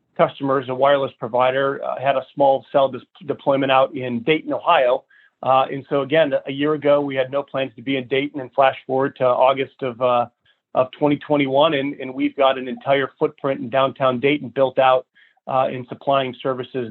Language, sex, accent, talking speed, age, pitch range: English, male, American, 195 wpm, 30-49, 130-145 Hz